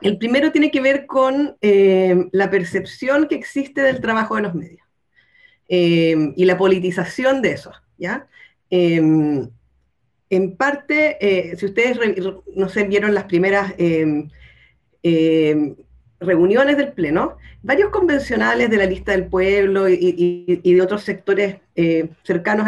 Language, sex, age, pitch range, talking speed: Spanish, female, 40-59, 180-230 Hz, 145 wpm